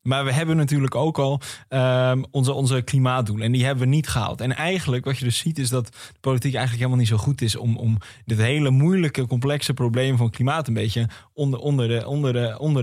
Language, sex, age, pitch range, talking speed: Dutch, male, 20-39, 115-140 Hz, 205 wpm